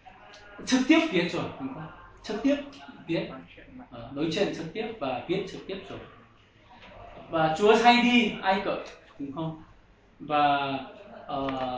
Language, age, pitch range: Korean, 20-39, 145-200 Hz